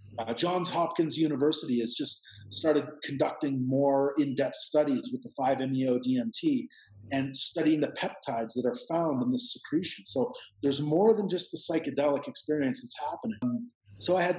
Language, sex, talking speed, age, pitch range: English, male, 165 wpm, 40-59, 130-175 Hz